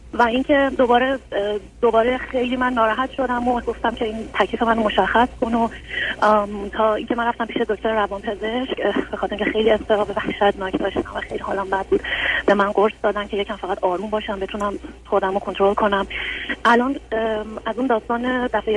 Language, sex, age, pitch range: Persian, female, 30-49, 205-250 Hz